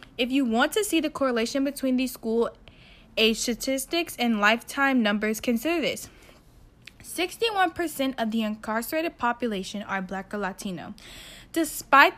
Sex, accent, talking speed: female, American, 130 wpm